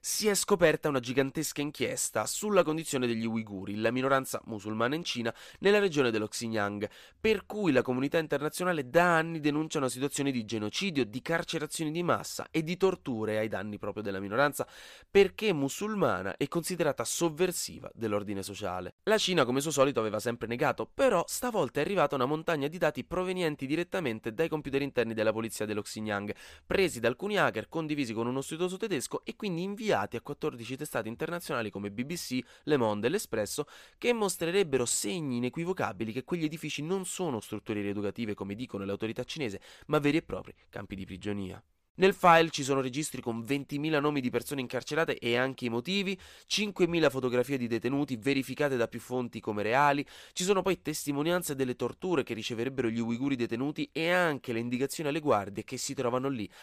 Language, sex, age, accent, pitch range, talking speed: Italian, male, 20-39, native, 115-165 Hz, 175 wpm